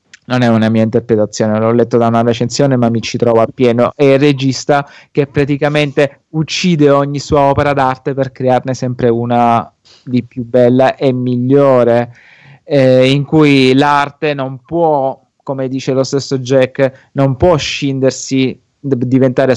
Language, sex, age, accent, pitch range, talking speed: Italian, male, 20-39, native, 120-140 Hz, 150 wpm